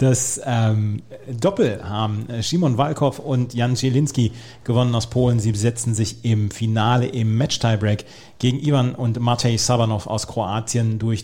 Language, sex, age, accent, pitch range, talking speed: German, male, 40-59, German, 110-135 Hz, 145 wpm